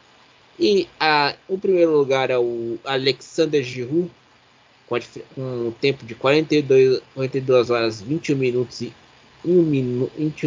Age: 20-39